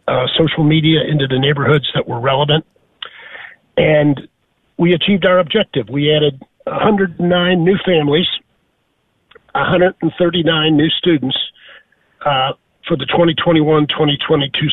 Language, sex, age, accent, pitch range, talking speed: English, male, 50-69, American, 140-180 Hz, 110 wpm